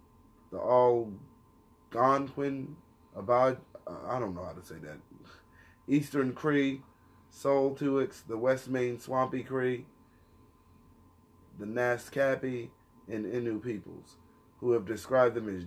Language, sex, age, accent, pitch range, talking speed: English, male, 30-49, American, 100-125 Hz, 105 wpm